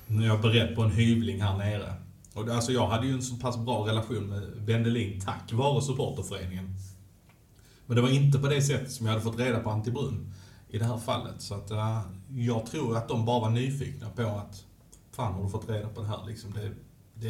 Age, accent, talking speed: 30-49, Norwegian, 220 wpm